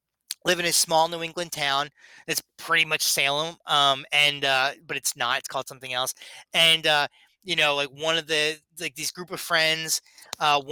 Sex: male